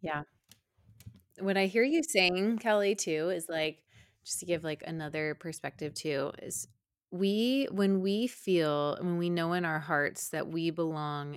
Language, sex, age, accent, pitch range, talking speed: English, female, 20-39, American, 155-190 Hz, 165 wpm